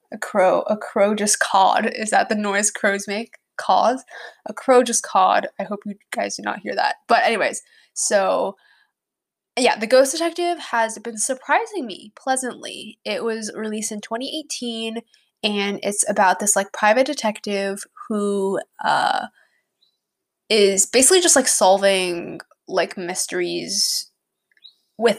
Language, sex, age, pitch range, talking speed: English, female, 10-29, 195-255 Hz, 140 wpm